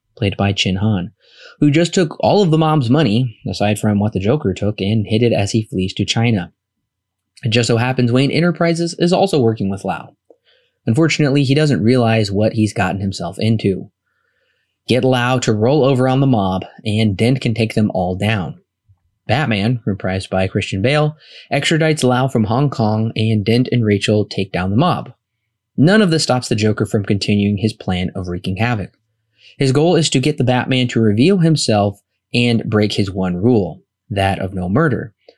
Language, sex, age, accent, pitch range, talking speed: English, male, 20-39, American, 100-135 Hz, 190 wpm